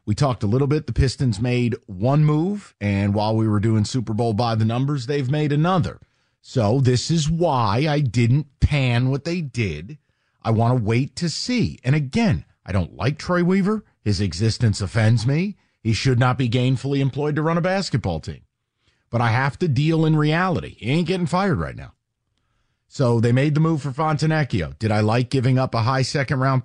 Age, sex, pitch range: 40-59, male, 115-150 Hz